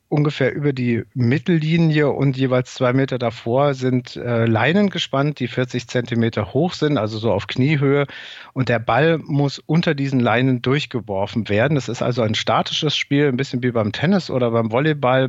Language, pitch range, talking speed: German, 120-145 Hz, 175 wpm